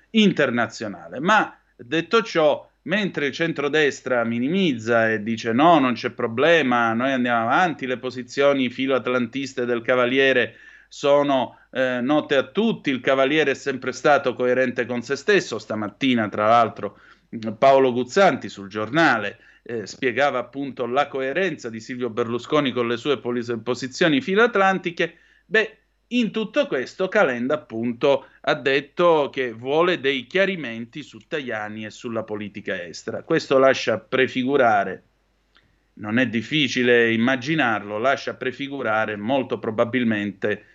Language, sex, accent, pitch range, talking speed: Italian, male, native, 115-150 Hz, 130 wpm